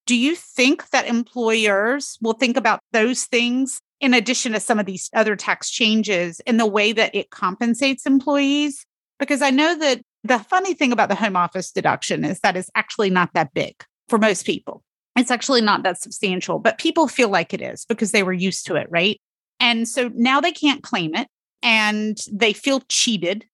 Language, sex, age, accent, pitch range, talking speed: English, female, 30-49, American, 195-245 Hz, 195 wpm